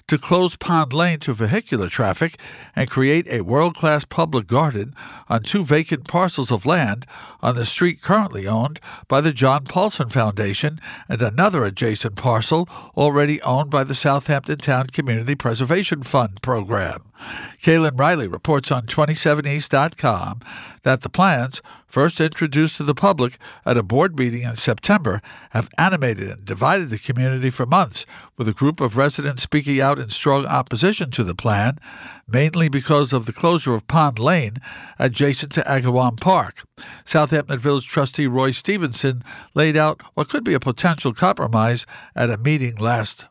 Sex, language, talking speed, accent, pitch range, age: male, English, 155 wpm, American, 125-155 Hz, 60-79